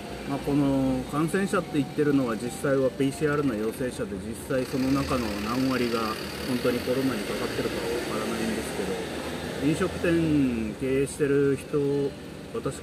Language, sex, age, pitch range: Japanese, male, 30-49, 110-150 Hz